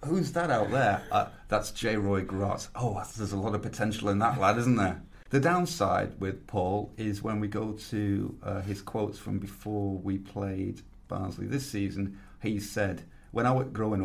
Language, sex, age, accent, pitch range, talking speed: English, male, 30-49, British, 95-115 Hz, 190 wpm